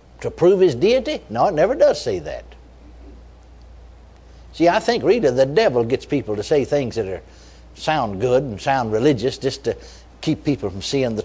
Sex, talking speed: male, 185 wpm